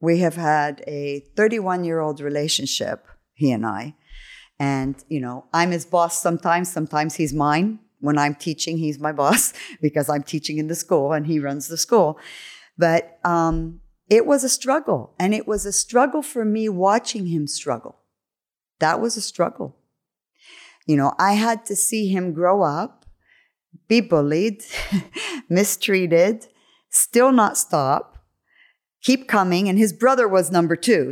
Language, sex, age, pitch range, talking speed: Arabic, female, 50-69, 160-220 Hz, 150 wpm